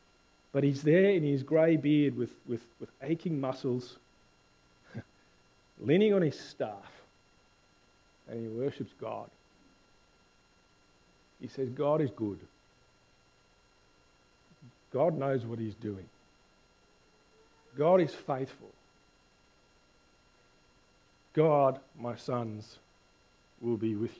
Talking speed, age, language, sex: 95 wpm, 40-59, English, male